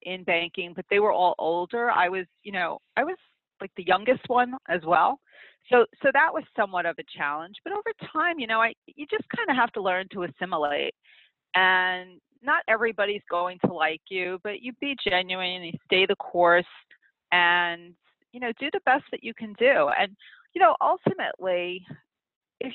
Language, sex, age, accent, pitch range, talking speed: English, female, 40-59, American, 180-260 Hz, 190 wpm